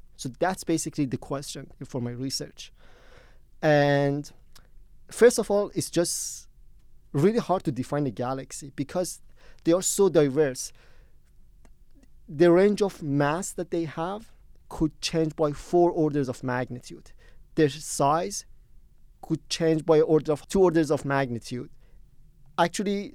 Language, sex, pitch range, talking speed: English, male, 140-175 Hz, 130 wpm